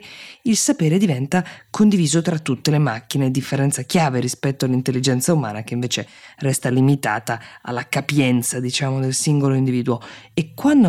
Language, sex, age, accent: Italian, female, 20-39, native